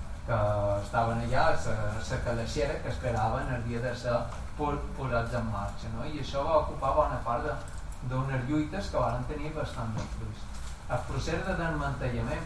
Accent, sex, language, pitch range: Spanish, male, English, 110-130 Hz